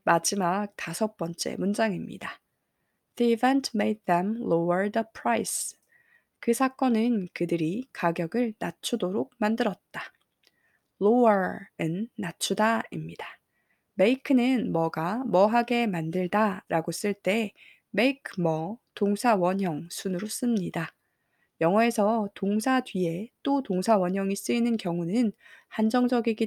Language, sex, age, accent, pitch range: Korean, female, 20-39, native, 180-230 Hz